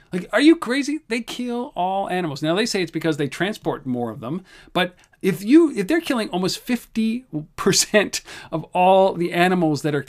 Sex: male